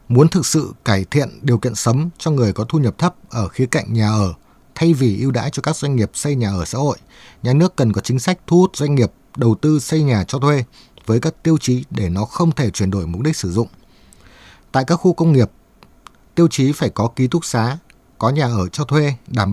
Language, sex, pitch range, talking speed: Vietnamese, male, 110-150 Hz, 245 wpm